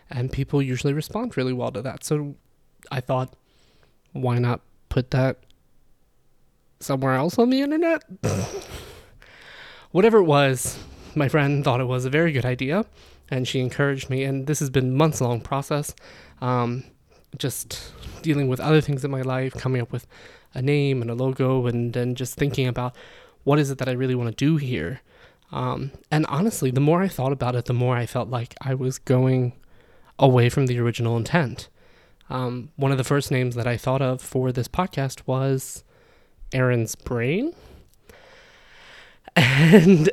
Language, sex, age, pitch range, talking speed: English, male, 20-39, 125-150 Hz, 170 wpm